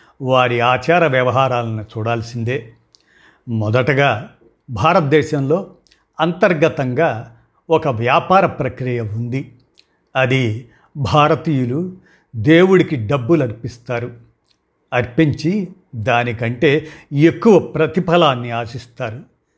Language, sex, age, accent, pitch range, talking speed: Telugu, male, 50-69, native, 120-160 Hz, 65 wpm